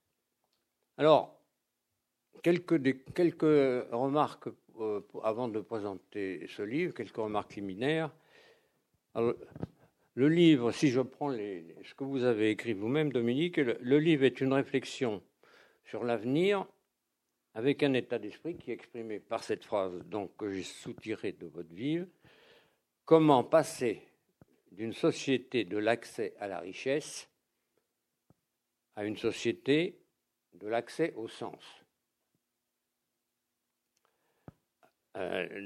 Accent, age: French, 60-79